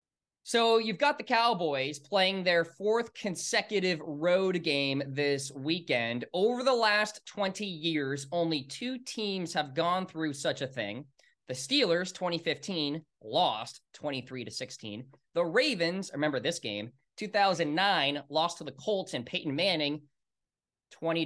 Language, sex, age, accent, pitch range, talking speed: English, male, 20-39, American, 150-205 Hz, 135 wpm